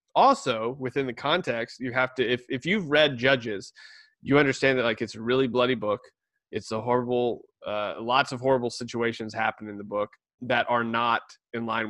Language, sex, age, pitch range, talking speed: English, male, 20-39, 120-145 Hz, 190 wpm